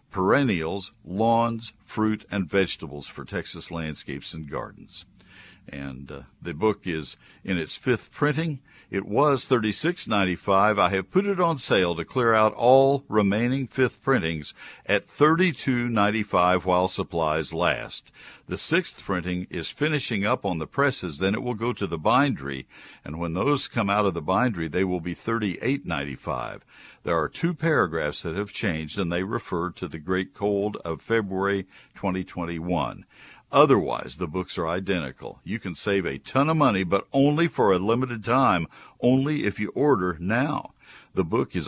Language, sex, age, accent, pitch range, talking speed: English, male, 60-79, American, 85-125 Hz, 160 wpm